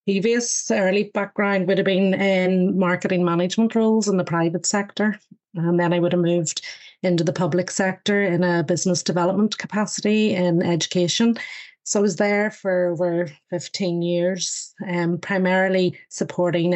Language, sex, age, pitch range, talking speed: English, female, 30-49, 170-195 Hz, 150 wpm